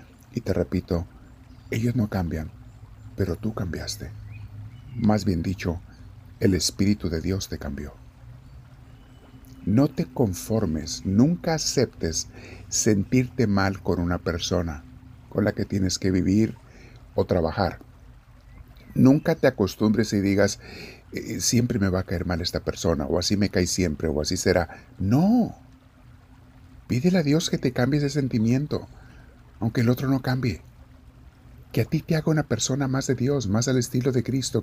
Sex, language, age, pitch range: male, Spanish, 50-69, 90-125 Hz